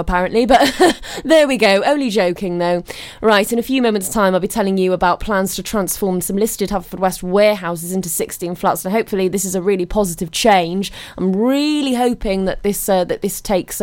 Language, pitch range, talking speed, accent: English, 185-240 Hz, 205 wpm, British